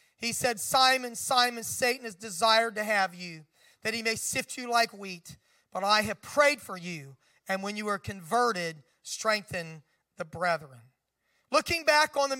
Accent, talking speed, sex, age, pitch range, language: American, 170 wpm, male, 40-59, 195-260 Hz, English